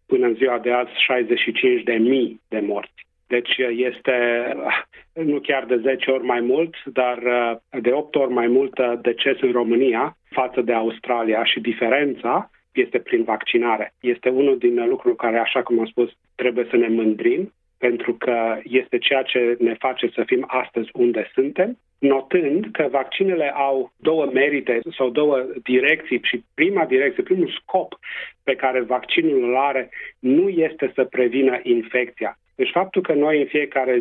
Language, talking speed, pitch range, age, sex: Romanian, 155 wpm, 120-140 Hz, 40-59, male